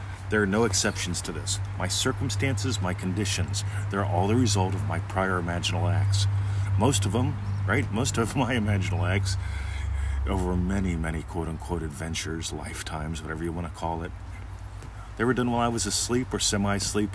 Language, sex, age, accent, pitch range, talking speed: English, male, 40-59, American, 90-100 Hz, 170 wpm